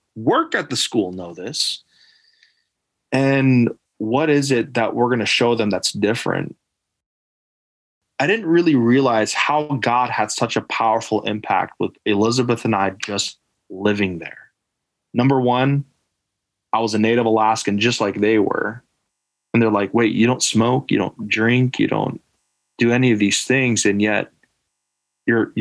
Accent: American